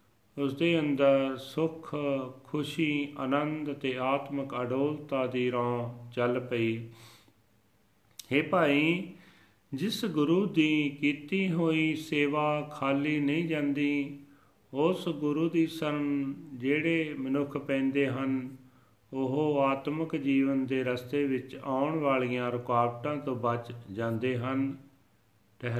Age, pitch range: 40-59, 125-145 Hz